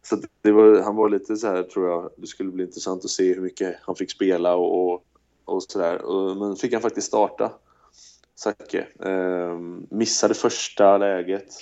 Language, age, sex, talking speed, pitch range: English, 20-39, male, 180 wpm, 95-105 Hz